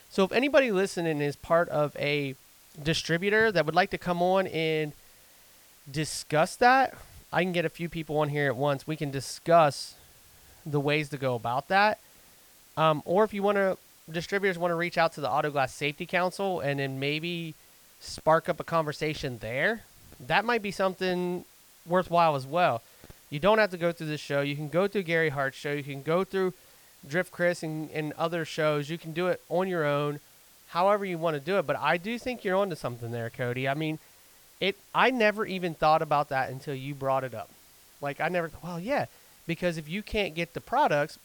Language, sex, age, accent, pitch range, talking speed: English, male, 30-49, American, 145-180 Hz, 205 wpm